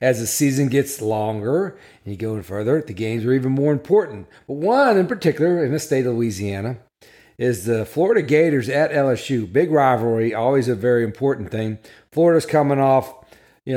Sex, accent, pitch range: male, American, 115-150 Hz